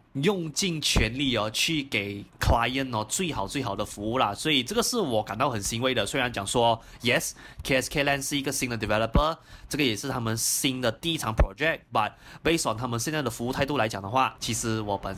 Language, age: Chinese, 20-39